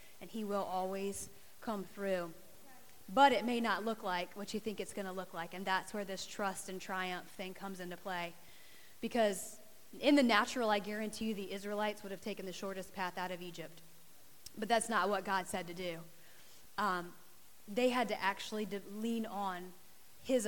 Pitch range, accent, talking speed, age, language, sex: 190-230 Hz, American, 190 wpm, 30-49, English, female